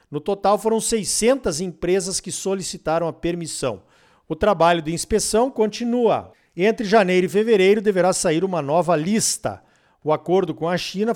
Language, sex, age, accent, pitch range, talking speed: Portuguese, male, 50-69, Brazilian, 170-225 Hz, 150 wpm